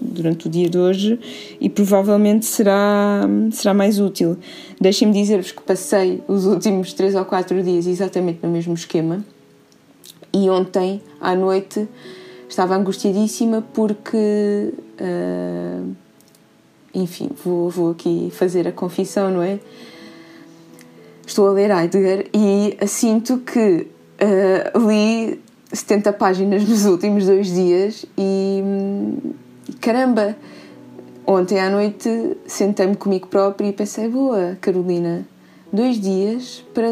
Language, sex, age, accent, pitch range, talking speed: Portuguese, female, 20-39, Brazilian, 180-210 Hz, 115 wpm